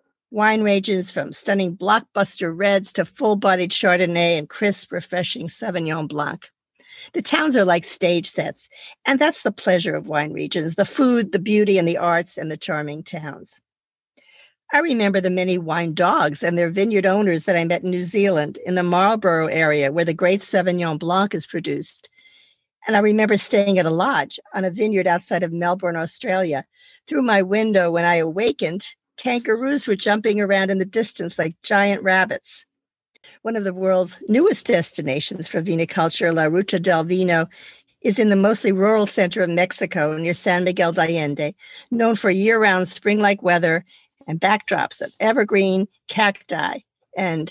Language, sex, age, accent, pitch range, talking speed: English, female, 50-69, American, 175-210 Hz, 165 wpm